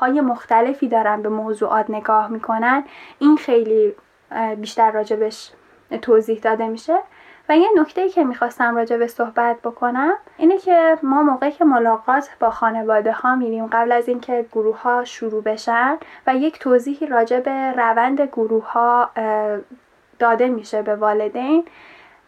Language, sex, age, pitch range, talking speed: Persian, female, 10-29, 230-290 Hz, 135 wpm